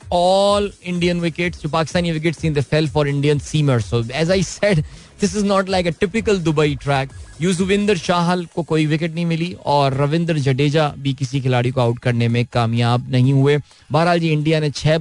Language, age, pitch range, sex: Hindi, 20-39, 140-180 Hz, male